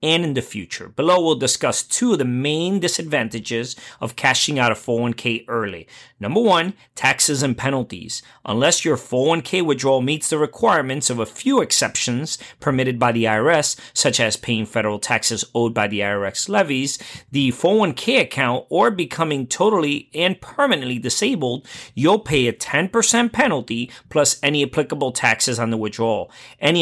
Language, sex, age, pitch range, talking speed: English, male, 30-49, 120-150 Hz, 155 wpm